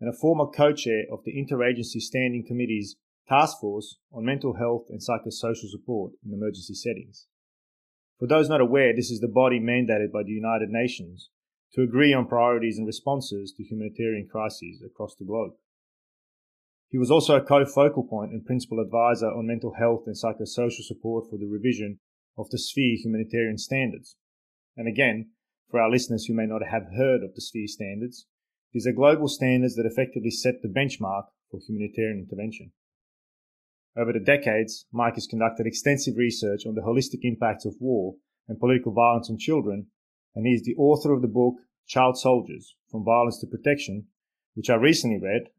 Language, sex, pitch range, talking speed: English, male, 110-125 Hz, 170 wpm